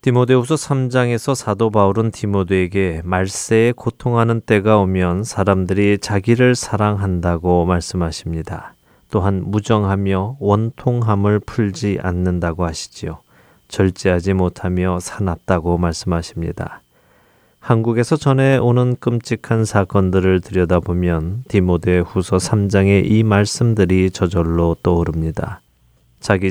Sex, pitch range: male, 90-115 Hz